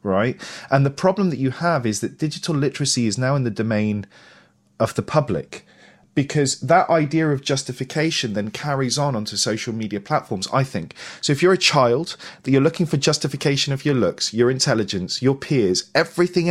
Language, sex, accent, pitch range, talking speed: English, male, British, 110-155 Hz, 185 wpm